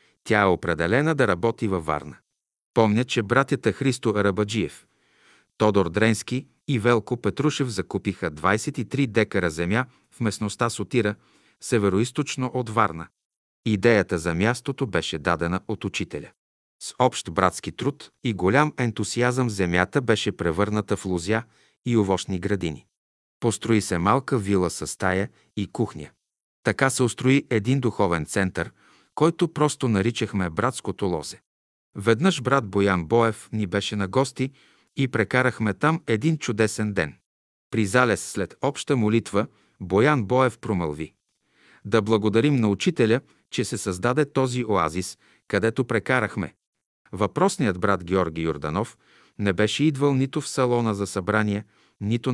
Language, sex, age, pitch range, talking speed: Bulgarian, male, 50-69, 100-125 Hz, 130 wpm